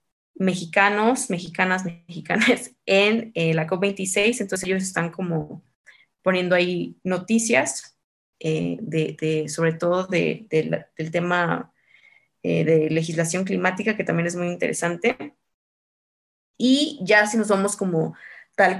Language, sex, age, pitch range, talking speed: Spanish, female, 20-39, 180-210 Hz, 115 wpm